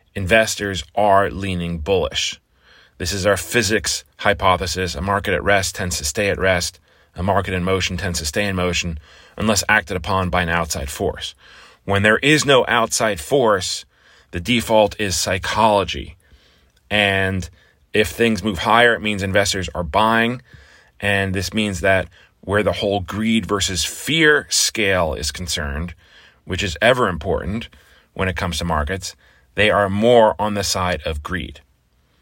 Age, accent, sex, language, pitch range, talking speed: 30-49, American, male, English, 85-110 Hz, 155 wpm